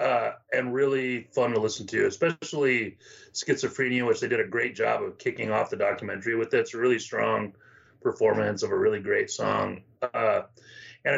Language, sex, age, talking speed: English, male, 30-49, 175 wpm